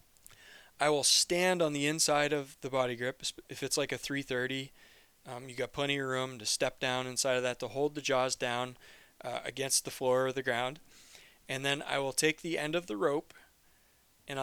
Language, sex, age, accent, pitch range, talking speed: English, male, 20-39, American, 125-145 Hz, 210 wpm